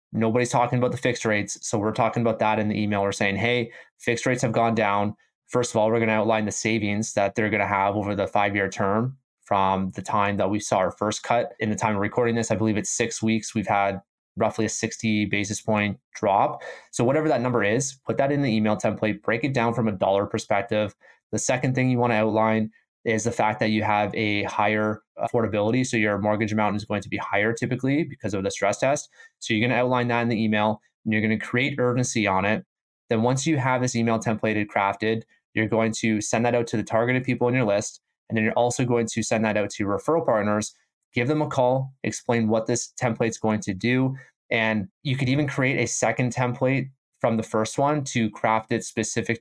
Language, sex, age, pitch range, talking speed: English, male, 20-39, 105-120 Hz, 235 wpm